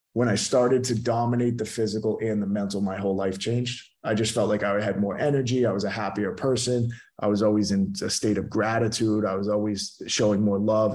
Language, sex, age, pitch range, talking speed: English, male, 30-49, 100-120 Hz, 225 wpm